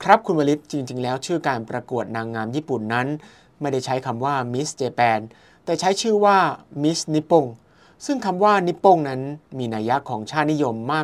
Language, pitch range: Thai, 120-160 Hz